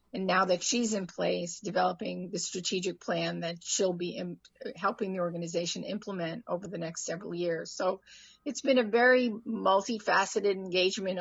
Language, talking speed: English, 155 wpm